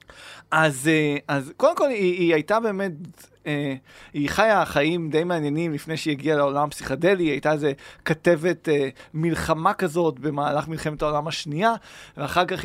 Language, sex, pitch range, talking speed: Hebrew, male, 145-185 Hz, 150 wpm